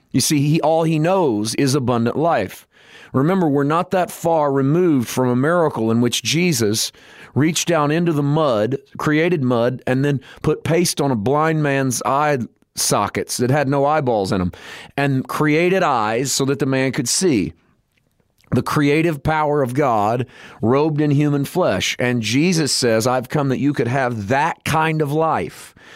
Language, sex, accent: English, male, American